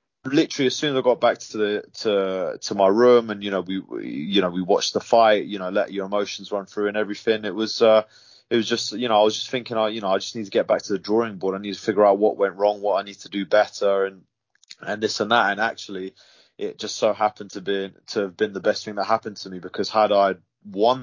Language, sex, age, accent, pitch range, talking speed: English, male, 20-39, British, 95-110 Hz, 285 wpm